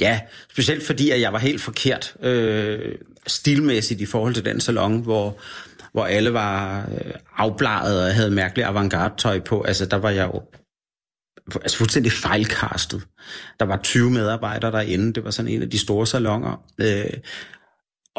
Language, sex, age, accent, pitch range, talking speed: Danish, male, 30-49, native, 105-130 Hz, 160 wpm